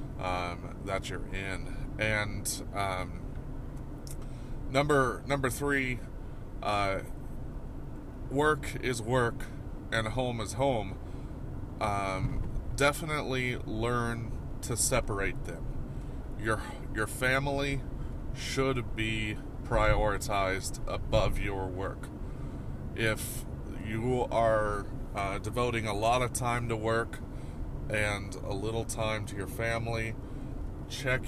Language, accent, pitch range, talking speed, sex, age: English, American, 105-125 Hz, 100 wpm, male, 20-39